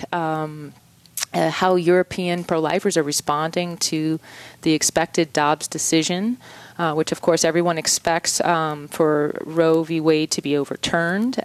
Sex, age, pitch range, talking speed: female, 30-49, 150-170 Hz, 135 wpm